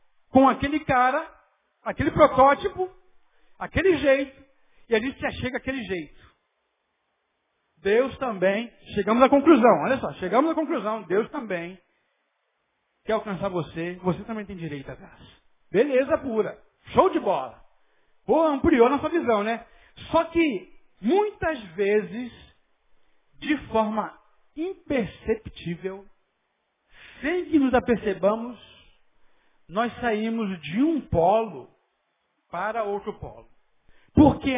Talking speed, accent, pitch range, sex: 115 wpm, Brazilian, 195-270 Hz, male